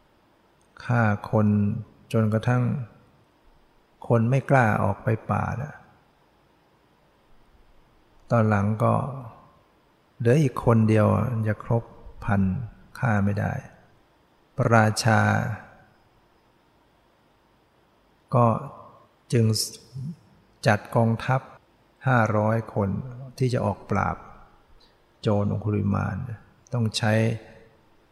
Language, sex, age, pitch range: English, male, 60-79, 105-120 Hz